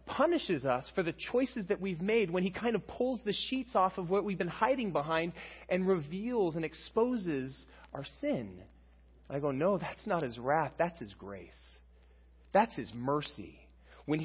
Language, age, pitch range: English, 30-49, 110-175 Hz